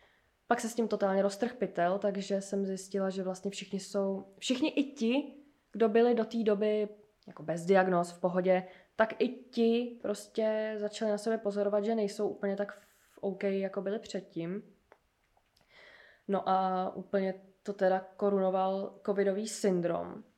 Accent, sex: native, female